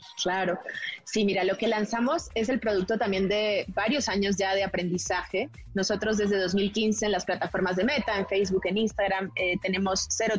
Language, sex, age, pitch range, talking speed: Spanish, female, 20-39, 185-215 Hz, 180 wpm